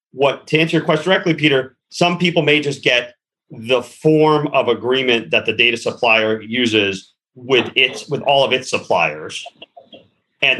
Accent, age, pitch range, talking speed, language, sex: American, 40-59, 115-155 Hz, 165 wpm, English, male